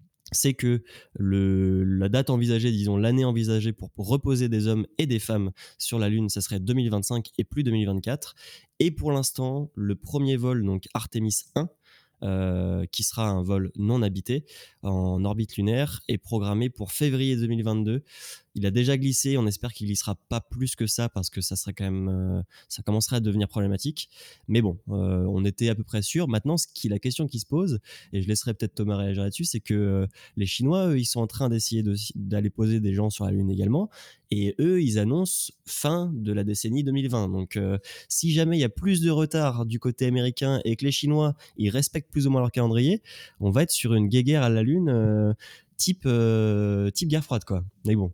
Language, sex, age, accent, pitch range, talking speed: French, male, 20-39, French, 100-135 Hz, 205 wpm